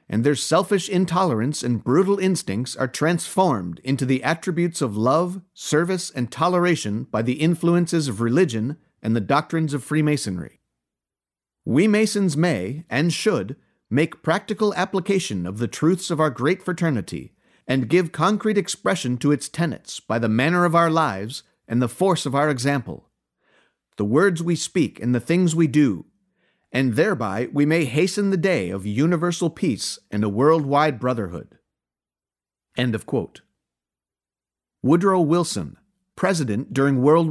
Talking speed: 150 wpm